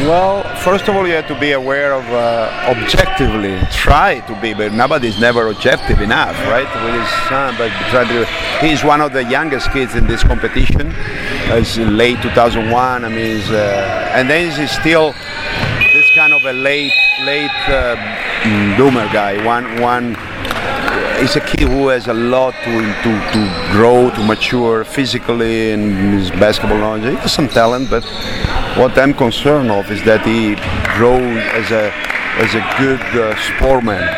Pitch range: 110-130 Hz